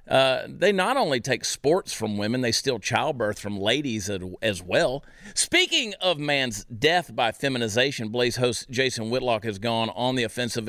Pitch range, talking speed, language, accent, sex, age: 110-150 Hz, 175 wpm, English, American, male, 40-59